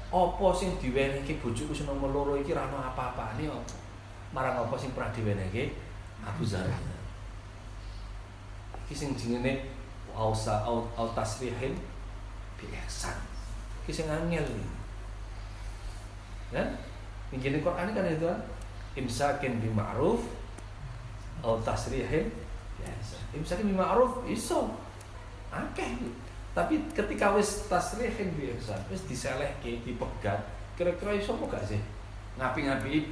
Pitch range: 100-135 Hz